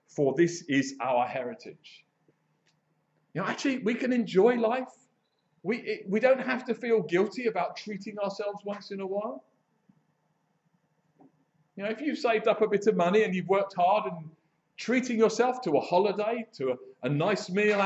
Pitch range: 155-220 Hz